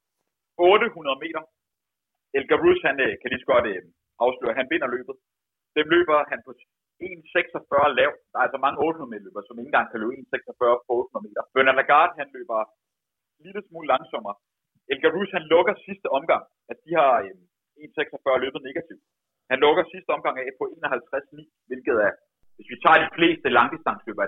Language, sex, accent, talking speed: Danish, male, native, 170 wpm